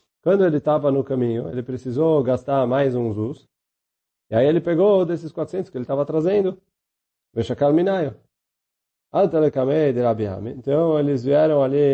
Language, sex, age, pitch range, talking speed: Portuguese, male, 30-49, 115-160 Hz, 160 wpm